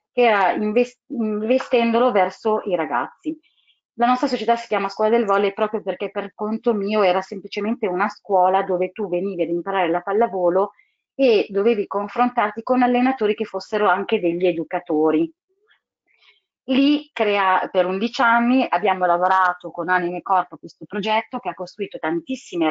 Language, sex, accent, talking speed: Italian, female, native, 145 wpm